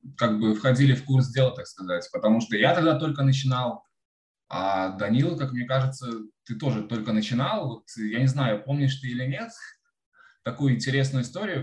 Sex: male